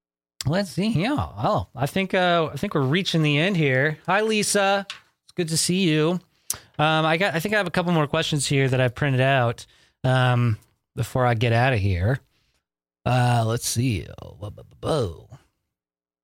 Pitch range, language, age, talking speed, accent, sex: 120-155 Hz, English, 20-39, 175 wpm, American, male